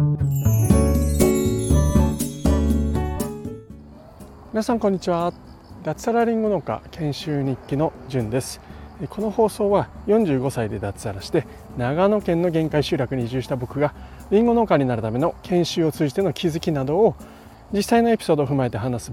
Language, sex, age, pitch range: Japanese, male, 40-59, 105-160 Hz